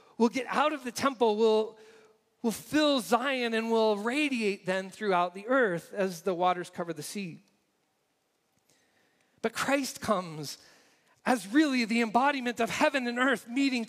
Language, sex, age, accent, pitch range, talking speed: English, male, 40-59, American, 205-260 Hz, 150 wpm